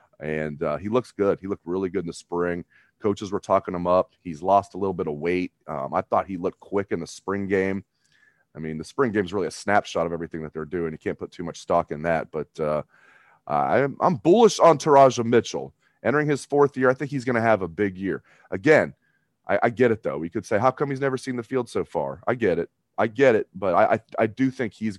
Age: 30-49